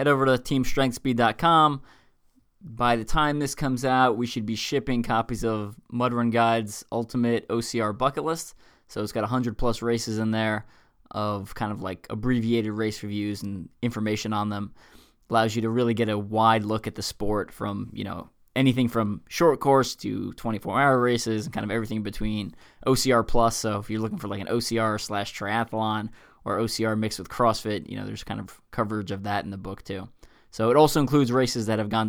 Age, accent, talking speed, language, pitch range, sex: 20-39, American, 195 wpm, English, 110-125 Hz, male